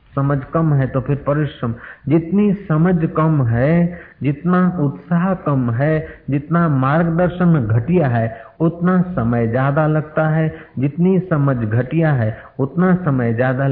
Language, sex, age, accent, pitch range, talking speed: Hindi, male, 50-69, native, 110-160 Hz, 130 wpm